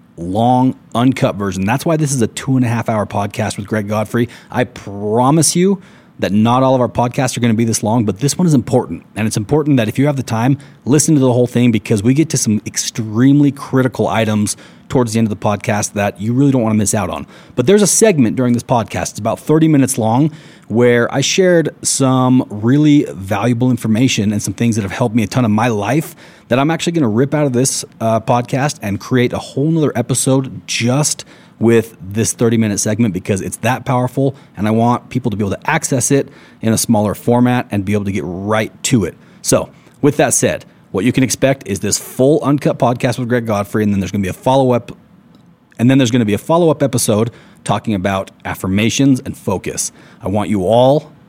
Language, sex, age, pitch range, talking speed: English, male, 30-49, 105-135 Hz, 225 wpm